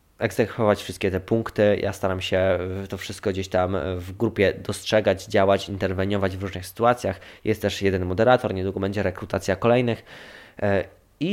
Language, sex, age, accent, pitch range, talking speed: Polish, male, 20-39, native, 100-120 Hz, 150 wpm